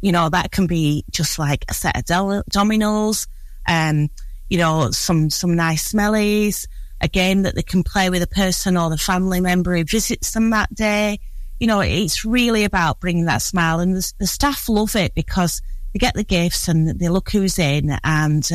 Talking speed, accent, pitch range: 205 wpm, British, 160-210 Hz